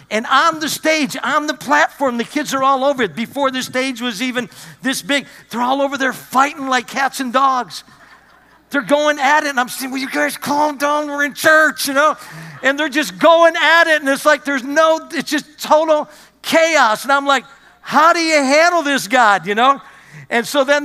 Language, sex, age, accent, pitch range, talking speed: English, male, 50-69, American, 225-285 Hz, 215 wpm